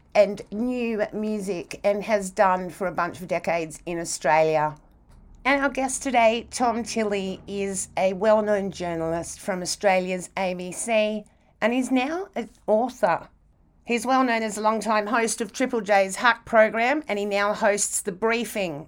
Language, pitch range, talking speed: English, 190-240 Hz, 155 wpm